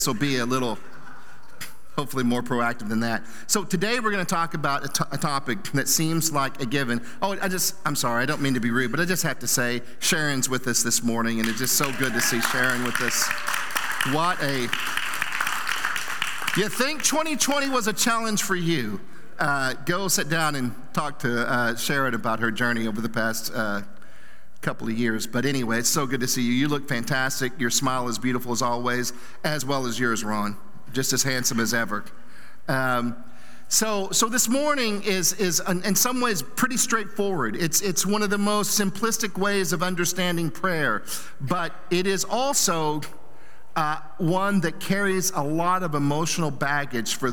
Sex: male